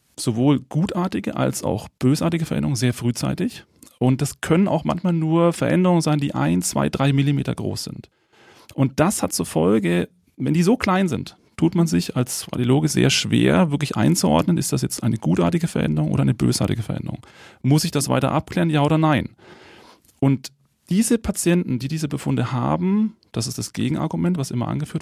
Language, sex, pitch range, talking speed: German, male, 130-175 Hz, 180 wpm